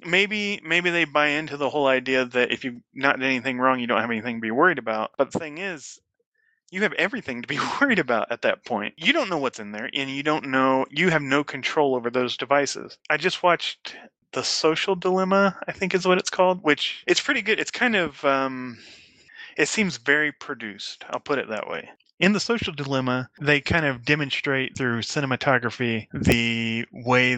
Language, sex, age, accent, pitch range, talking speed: English, male, 20-39, American, 125-165 Hz, 210 wpm